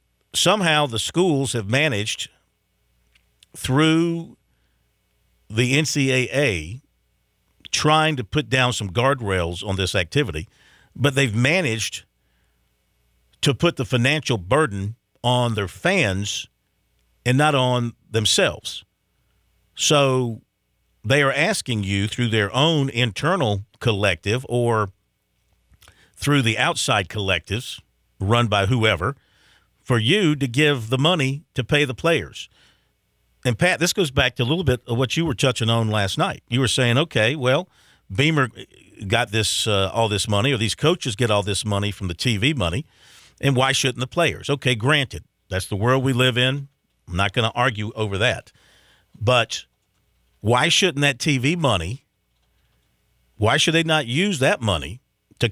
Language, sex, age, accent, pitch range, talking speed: English, male, 50-69, American, 100-140 Hz, 145 wpm